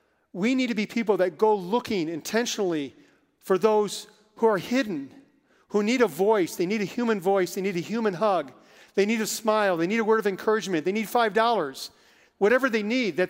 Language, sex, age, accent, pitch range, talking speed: English, male, 50-69, American, 195-235 Hz, 210 wpm